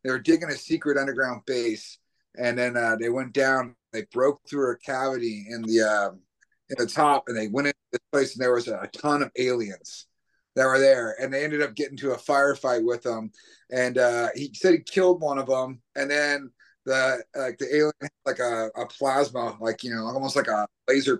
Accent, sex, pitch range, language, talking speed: American, male, 120-145 Hz, English, 220 wpm